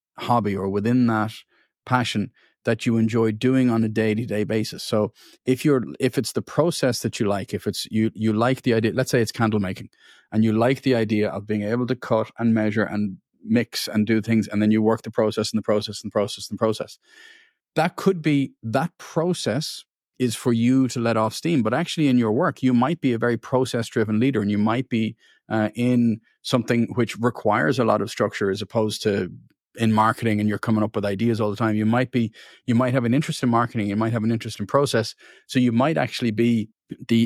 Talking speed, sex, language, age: 225 wpm, male, English, 40-59